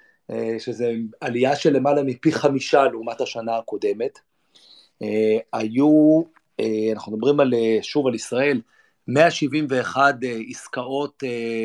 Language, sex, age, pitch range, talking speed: Hebrew, male, 40-59, 120-155 Hz, 120 wpm